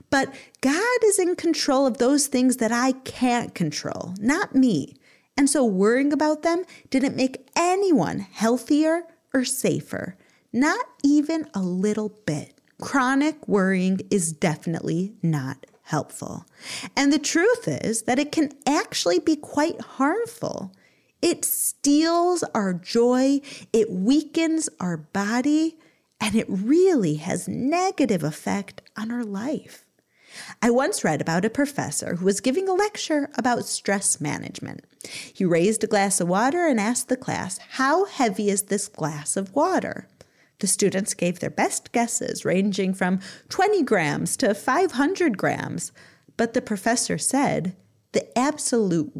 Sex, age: female, 30-49